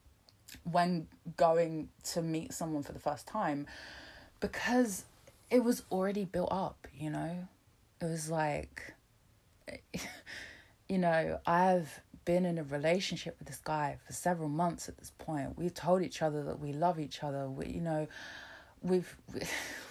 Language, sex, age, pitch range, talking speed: English, female, 20-39, 150-220 Hz, 150 wpm